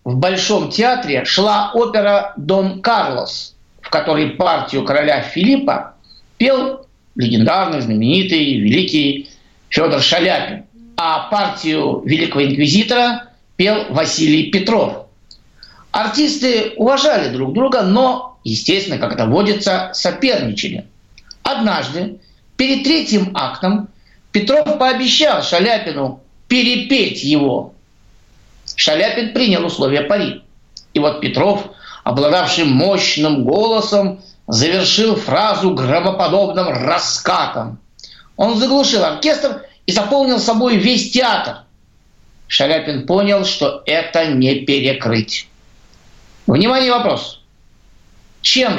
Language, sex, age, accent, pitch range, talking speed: Russian, male, 50-69, native, 145-235 Hz, 90 wpm